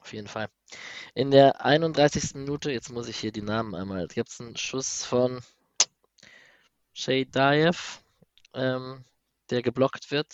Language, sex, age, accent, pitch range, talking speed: German, male, 20-39, German, 110-130 Hz, 135 wpm